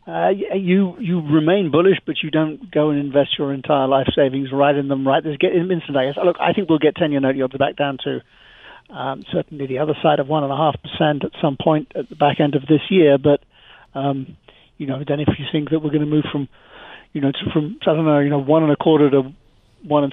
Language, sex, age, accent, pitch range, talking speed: English, male, 50-69, British, 140-155 Hz, 260 wpm